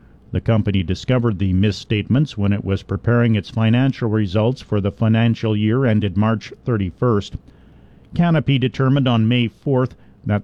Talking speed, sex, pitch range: 145 wpm, male, 105-130 Hz